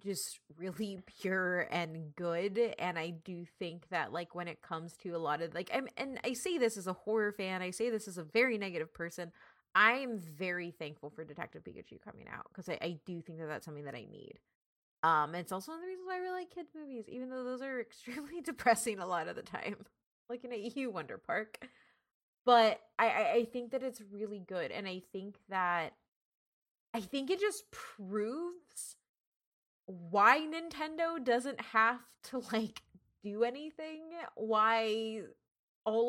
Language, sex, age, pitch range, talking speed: English, female, 20-39, 180-245 Hz, 190 wpm